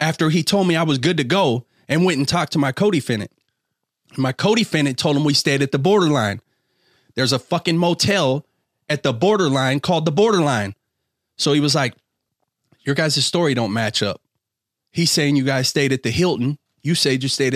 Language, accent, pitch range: English, American, 130-170 Hz